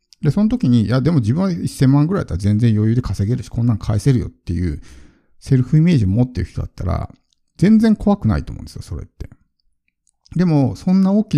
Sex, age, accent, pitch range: male, 50-69, native, 100-140 Hz